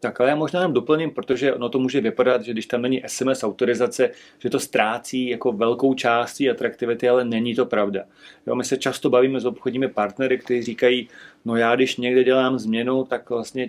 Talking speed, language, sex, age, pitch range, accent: 200 wpm, Czech, male, 40-59, 115-130 Hz, native